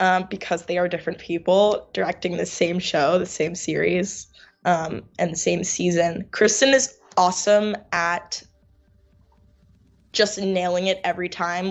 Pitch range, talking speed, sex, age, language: 175-210 Hz, 140 wpm, female, 10-29, English